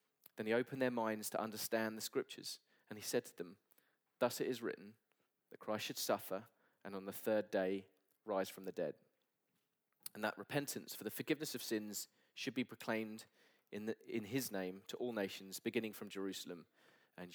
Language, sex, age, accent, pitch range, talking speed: English, male, 20-39, British, 110-140 Hz, 185 wpm